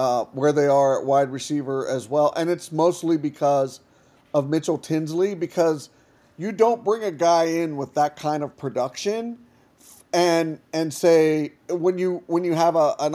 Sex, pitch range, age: male, 145-180 Hz, 40-59